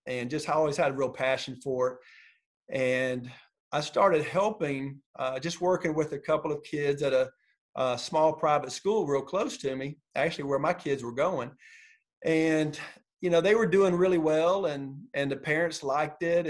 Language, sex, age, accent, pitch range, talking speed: English, male, 40-59, American, 135-165 Hz, 190 wpm